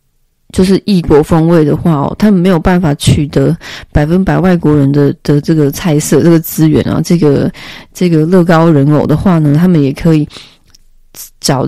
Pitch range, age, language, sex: 150-185 Hz, 20-39, Chinese, female